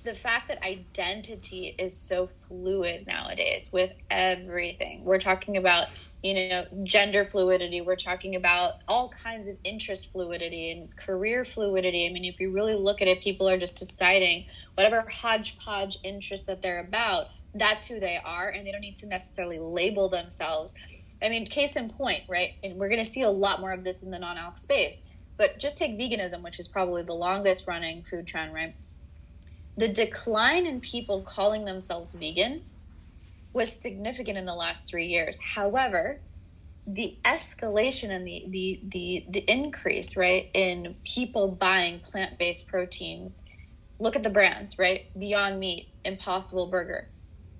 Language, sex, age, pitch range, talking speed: English, female, 20-39, 175-210 Hz, 165 wpm